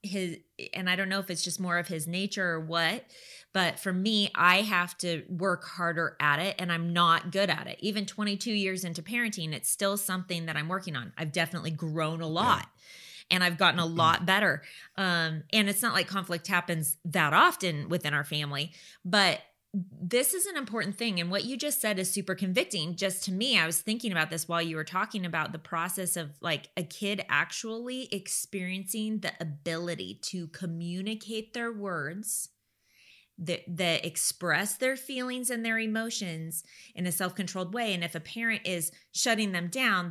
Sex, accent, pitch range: female, American, 170-205 Hz